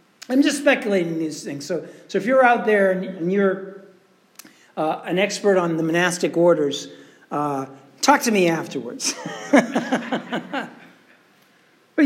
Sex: male